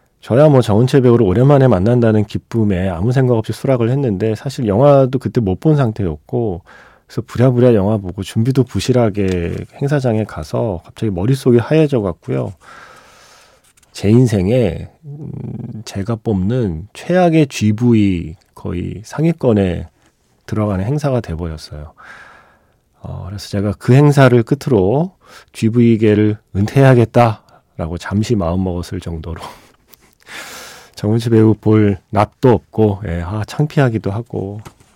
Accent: native